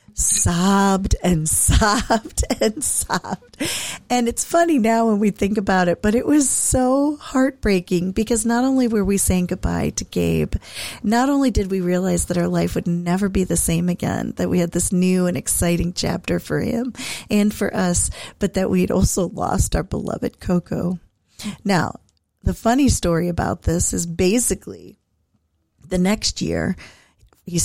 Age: 40-59